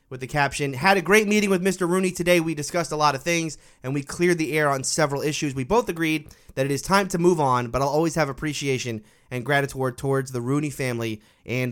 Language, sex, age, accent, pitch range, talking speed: English, male, 30-49, American, 120-165 Hz, 240 wpm